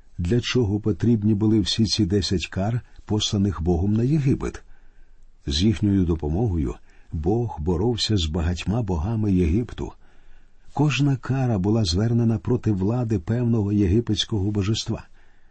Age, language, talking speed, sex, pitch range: 50-69, Ukrainian, 115 wpm, male, 95-125 Hz